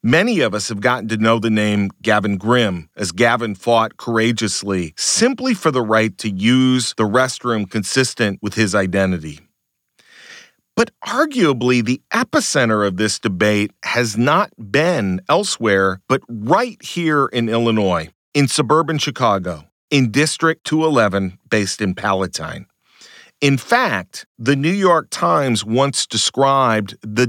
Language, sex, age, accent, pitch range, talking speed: English, male, 40-59, American, 105-135 Hz, 135 wpm